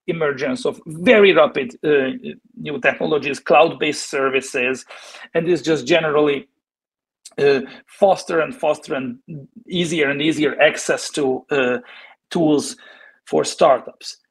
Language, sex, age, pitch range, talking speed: English, male, 40-59, 150-230 Hz, 115 wpm